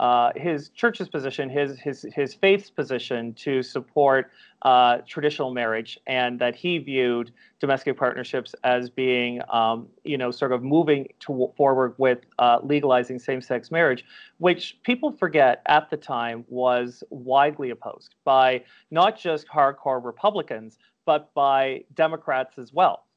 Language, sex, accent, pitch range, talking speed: English, male, American, 125-155 Hz, 140 wpm